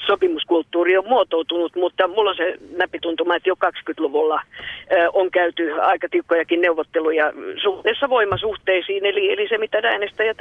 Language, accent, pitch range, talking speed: Finnish, native, 165-245 Hz, 135 wpm